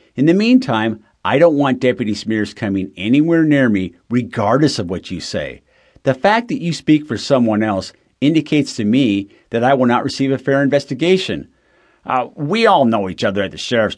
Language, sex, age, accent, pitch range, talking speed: English, male, 50-69, American, 100-145 Hz, 195 wpm